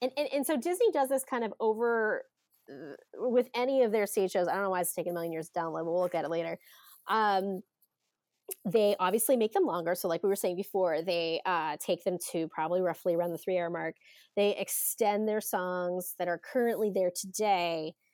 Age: 20-39